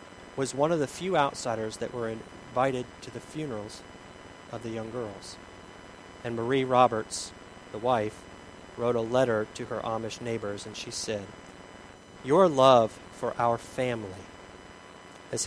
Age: 40-59